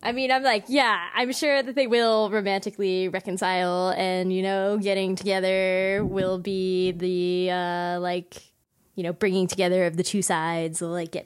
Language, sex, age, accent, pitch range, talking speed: English, female, 10-29, American, 180-225 Hz, 175 wpm